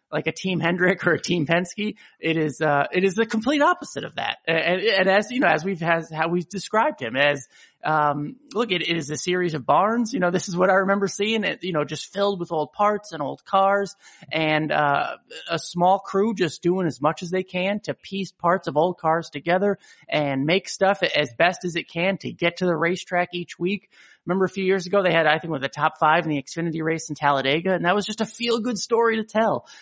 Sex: male